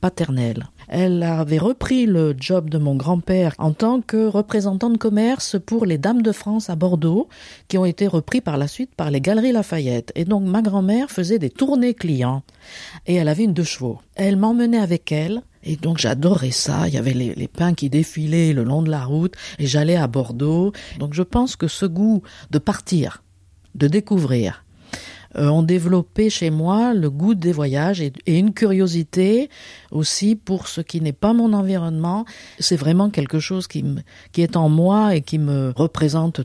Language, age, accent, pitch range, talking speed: French, 50-69, French, 150-200 Hz, 190 wpm